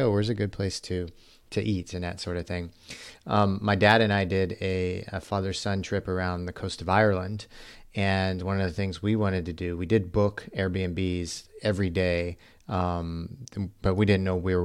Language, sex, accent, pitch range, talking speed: English, male, American, 90-110 Hz, 200 wpm